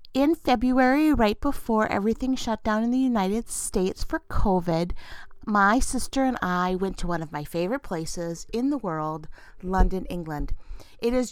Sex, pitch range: female, 180-240 Hz